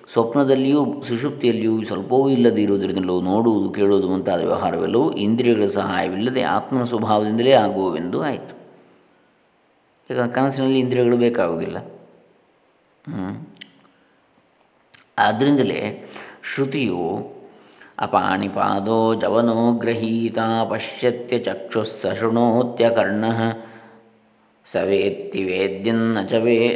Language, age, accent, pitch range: Kannada, 20-39, native, 110-125 Hz